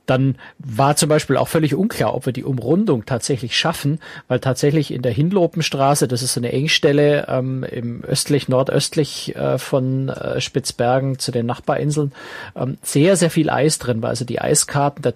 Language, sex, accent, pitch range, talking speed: German, male, German, 120-145 Hz, 175 wpm